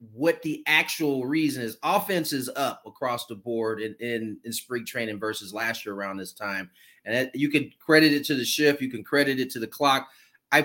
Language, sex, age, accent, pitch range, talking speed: English, male, 30-49, American, 130-160 Hz, 215 wpm